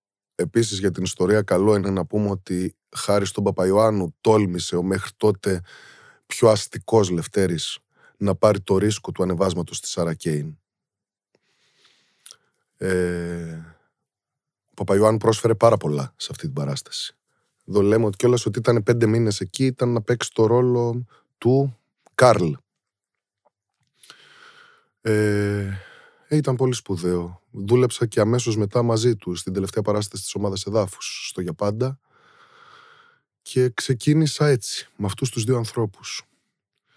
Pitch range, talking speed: 95-125 Hz, 130 wpm